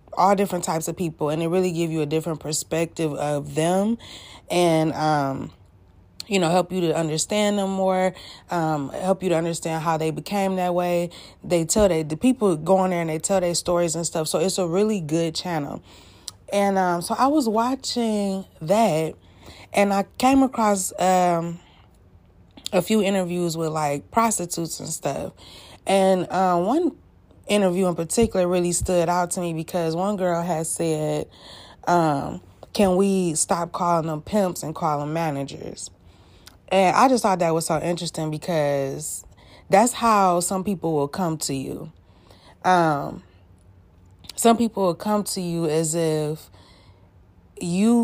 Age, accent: 20-39, American